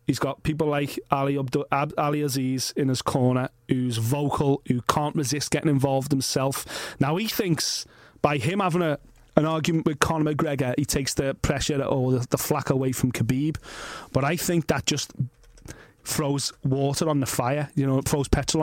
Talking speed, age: 185 wpm, 30-49